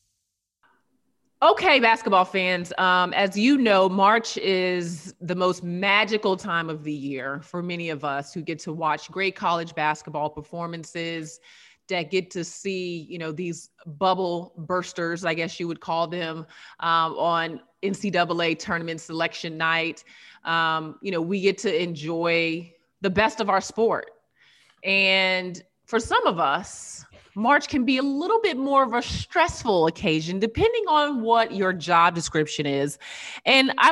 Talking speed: 150 wpm